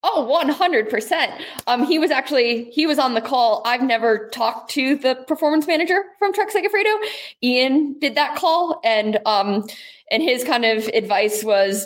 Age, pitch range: 20-39, 210-270 Hz